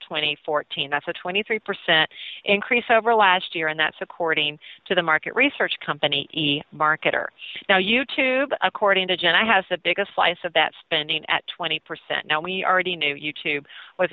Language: English